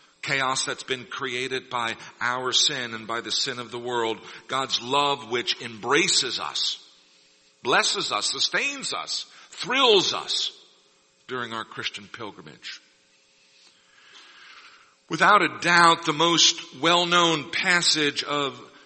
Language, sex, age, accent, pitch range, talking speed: English, male, 50-69, American, 145-190 Hz, 120 wpm